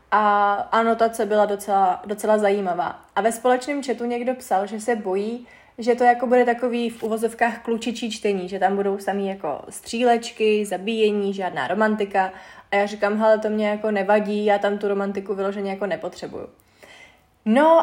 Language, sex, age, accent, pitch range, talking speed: Czech, female, 20-39, native, 205-250 Hz, 165 wpm